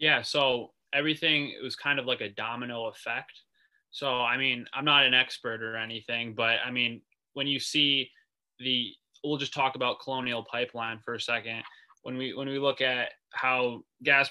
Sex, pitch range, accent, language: male, 120-140 Hz, American, English